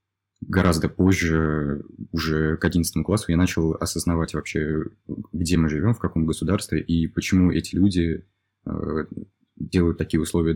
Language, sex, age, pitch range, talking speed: Russian, male, 20-39, 80-95 Hz, 130 wpm